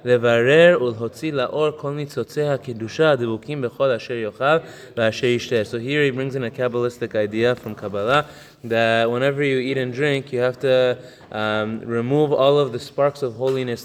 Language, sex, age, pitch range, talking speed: English, male, 20-39, 115-130 Hz, 115 wpm